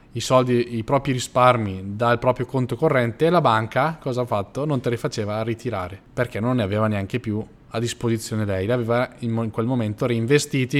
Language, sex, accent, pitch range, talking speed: Italian, male, native, 110-135 Hz, 195 wpm